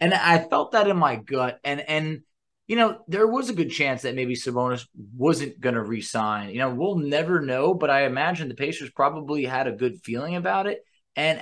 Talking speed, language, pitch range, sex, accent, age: 215 wpm, English, 130-175 Hz, male, American, 20-39